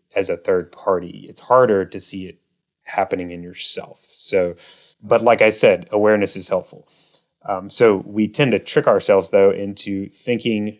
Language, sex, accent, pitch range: English, male, American, 95-110 Hz